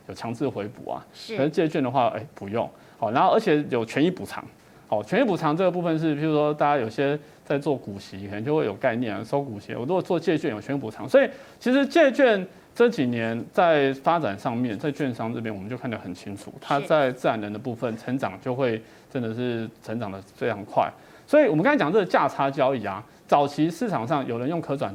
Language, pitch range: Chinese, 115-190 Hz